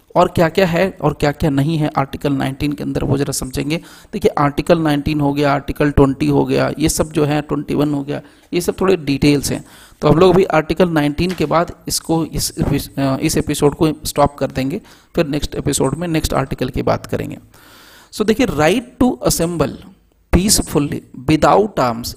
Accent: native